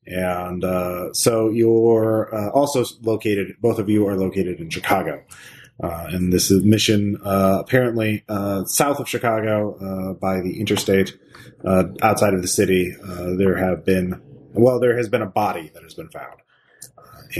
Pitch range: 90-110 Hz